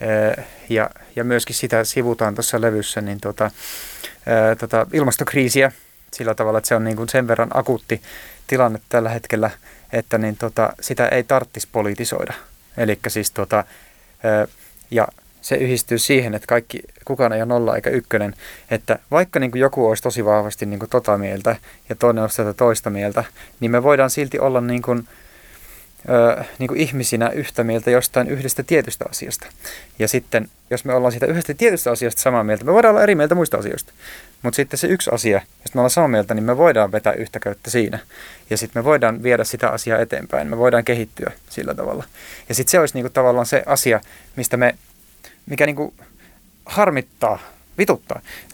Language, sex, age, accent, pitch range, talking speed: Finnish, male, 30-49, native, 110-130 Hz, 175 wpm